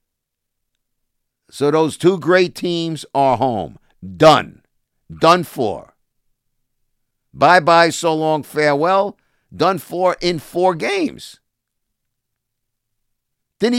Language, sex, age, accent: English, male, 50-69, American